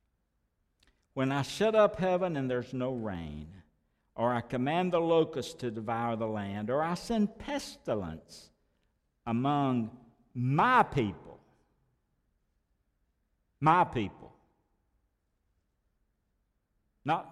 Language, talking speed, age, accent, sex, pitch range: English, 95 wpm, 60-79, American, male, 100-160 Hz